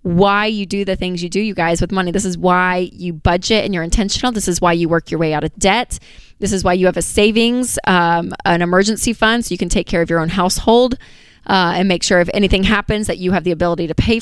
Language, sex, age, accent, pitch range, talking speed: English, female, 20-39, American, 180-215 Hz, 265 wpm